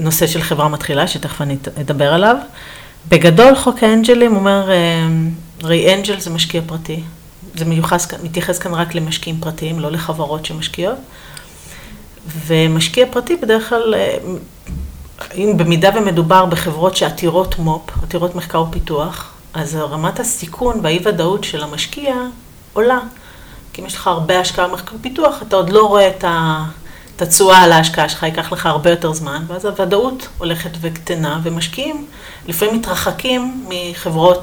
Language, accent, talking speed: Hebrew, native, 140 wpm